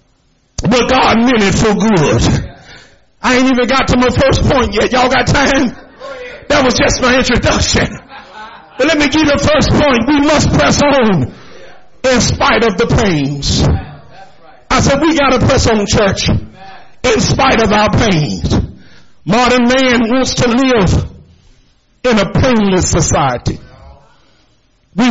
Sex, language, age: male, English, 50-69